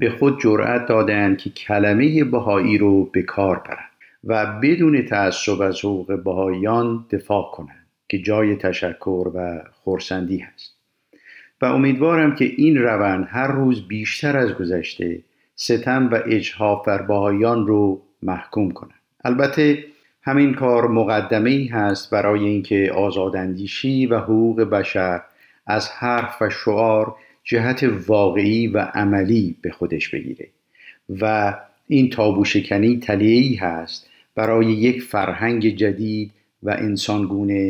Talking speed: 125 wpm